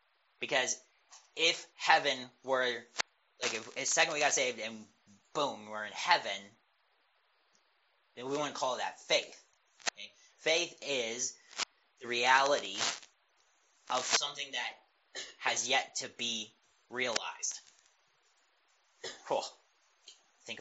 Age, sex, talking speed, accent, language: 30-49, male, 105 wpm, American, English